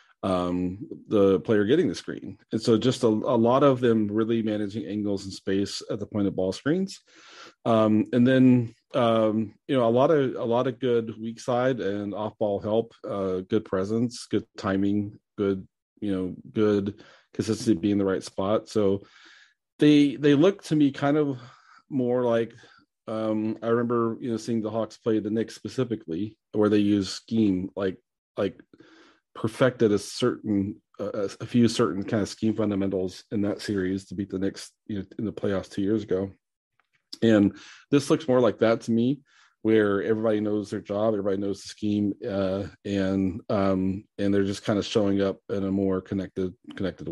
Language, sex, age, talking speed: English, male, 30-49, 180 wpm